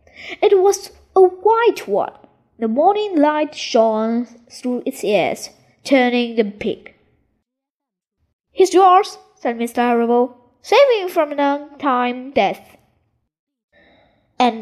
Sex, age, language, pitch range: female, 10-29, Chinese, 230-340 Hz